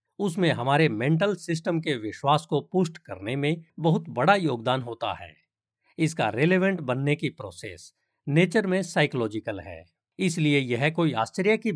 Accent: native